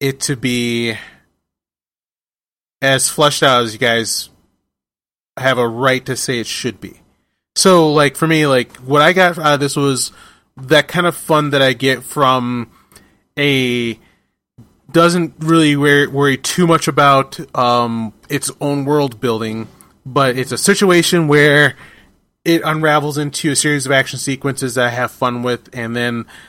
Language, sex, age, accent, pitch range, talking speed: English, male, 30-49, American, 125-150 Hz, 160 wpm